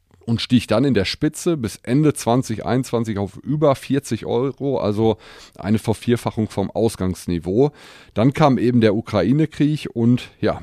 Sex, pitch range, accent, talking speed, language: male, 100-125 Hz, German, 140 wpm, German